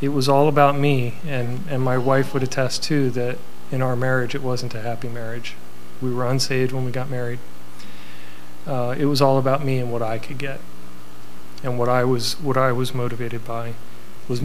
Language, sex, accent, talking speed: English, male, American, 205 wpm